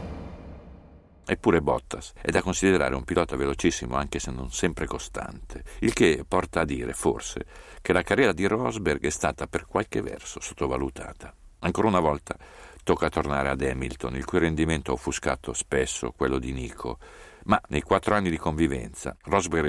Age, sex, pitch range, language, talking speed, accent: 50-69, male, 70-95 Hz, Italian, 160 wpm, native